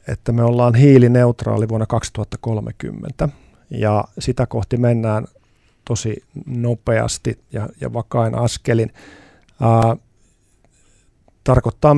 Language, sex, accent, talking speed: Finnish, male, native, 90 wpm